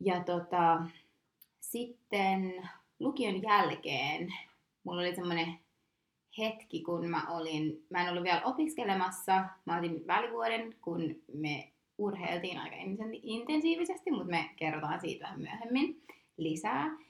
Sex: female